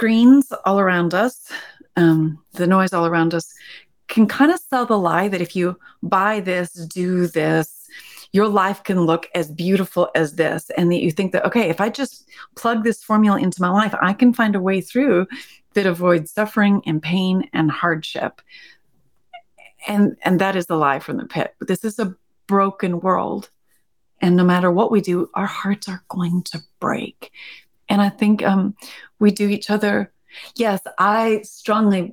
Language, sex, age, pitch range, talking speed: English, female, 30-49, 170-215 Hz, 180 wpm